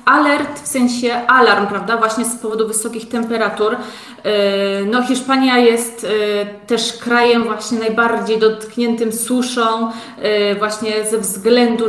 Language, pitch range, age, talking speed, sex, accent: Polish, 210-245 Hz, 20-39, 110 wpm, female, native